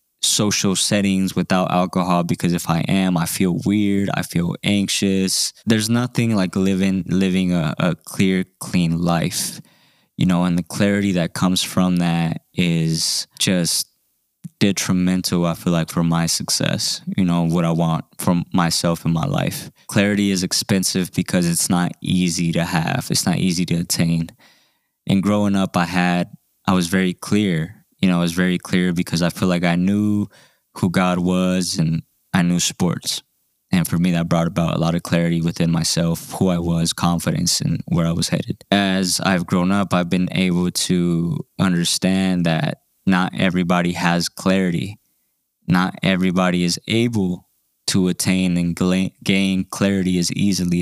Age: 20-39